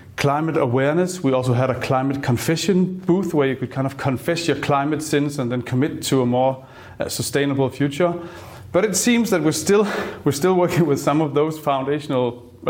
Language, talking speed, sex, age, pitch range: English, 190 wpm, male, 30-49, 120-145 Hz